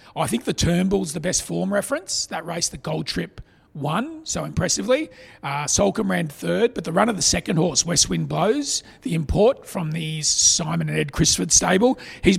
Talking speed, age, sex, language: 195 wpm, 40-59, male, English